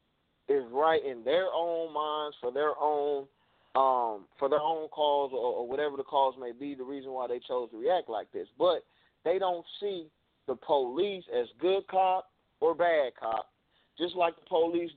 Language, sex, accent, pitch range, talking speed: English, male, American, 145-210 Hz, 170 wpm